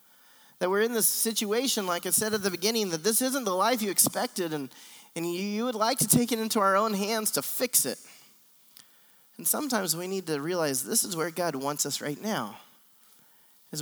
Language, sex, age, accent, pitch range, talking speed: English, male, 20-39, American, 170-225 Hz, 215 wpm